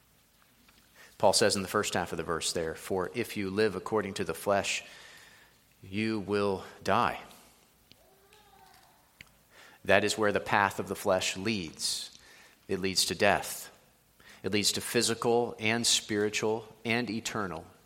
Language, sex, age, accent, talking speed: English, male, 40-59, American, 140 wpm